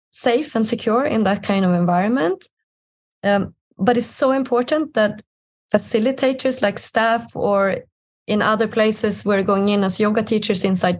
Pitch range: 180-225 Hz